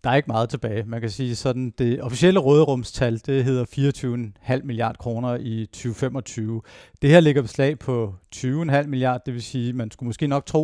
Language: Danish